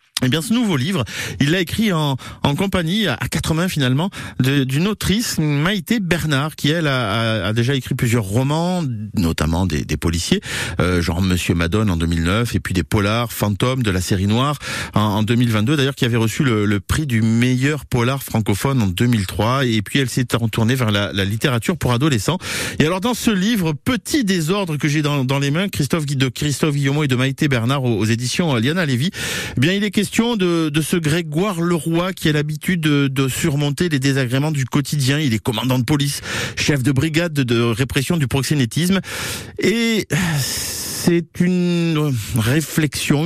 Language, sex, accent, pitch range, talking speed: French, male, French, 115-155 Hz, 190 wpm